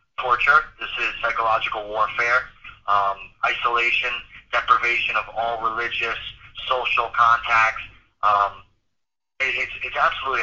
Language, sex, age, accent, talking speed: English, male, 30-49, American, 105 wpm